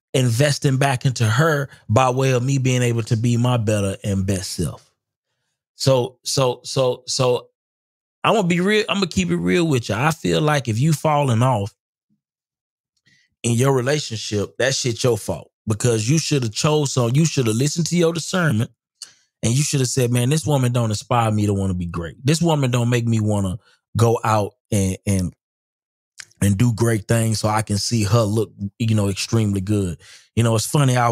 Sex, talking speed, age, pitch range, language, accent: male, 200 wpm, 20-39, 105-140 Hz, English, American